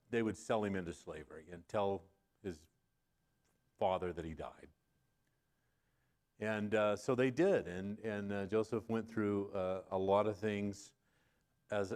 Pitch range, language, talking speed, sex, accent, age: 100-120 Hz, English, 150 wpm, male, American, 40-59